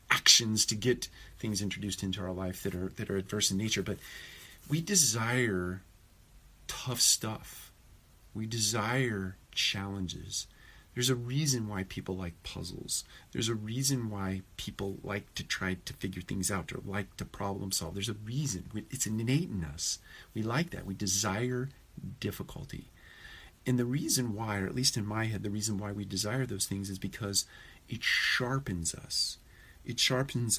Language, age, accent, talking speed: English, 40-59, American, 165 wpm